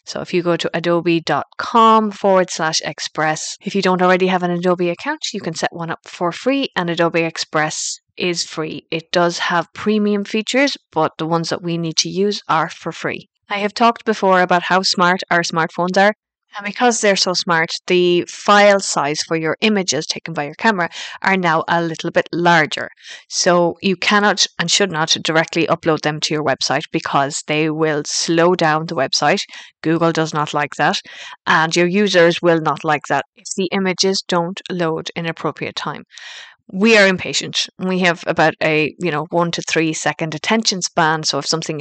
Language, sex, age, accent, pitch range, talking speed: English, female, 20-39, Irish, 155-190 Hz, 190 wpm